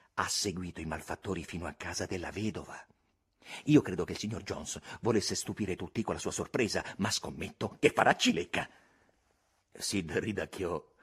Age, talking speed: 50-69, 160 wpm